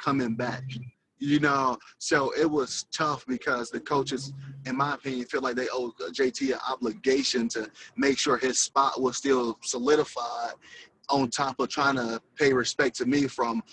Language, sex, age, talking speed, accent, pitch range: English, male, 20-39, 170 wpm, American, 125-155 Hz